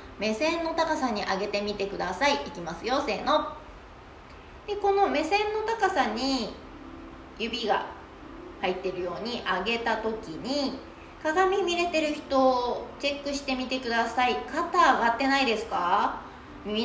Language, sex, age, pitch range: Japanese, female, 20-39, 205-310 Hz